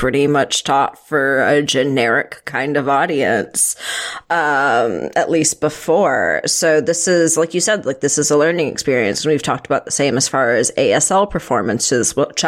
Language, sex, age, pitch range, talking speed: English, female, 30-49, 145-175 Hz, 180 wpm